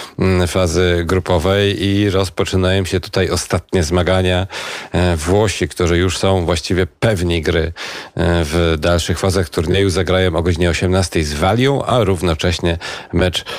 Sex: male